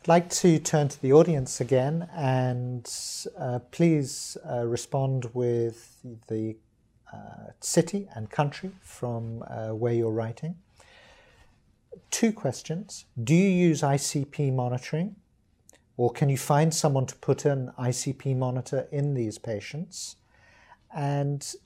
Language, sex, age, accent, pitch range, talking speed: English, male, 50-69, British, 120-150 Hz, 125 wpm